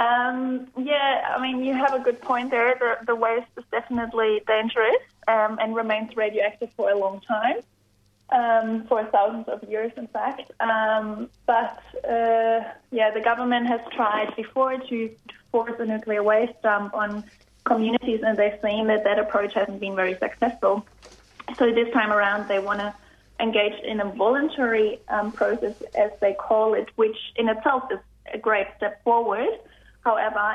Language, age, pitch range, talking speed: English, 20-39, 200-235 Hz, 165 wpm